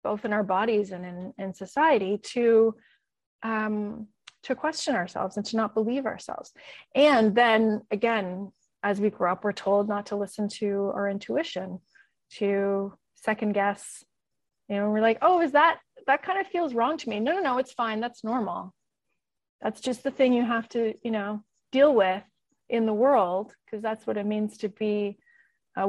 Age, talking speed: 30-49, 185 wpm